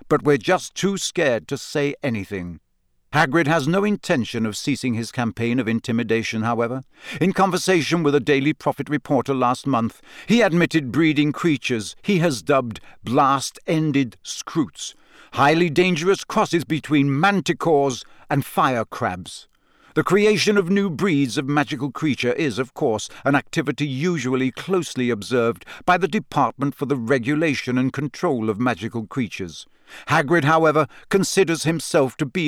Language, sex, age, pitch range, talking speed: English, male, 60-79, 125-165 Hz, 145 wpm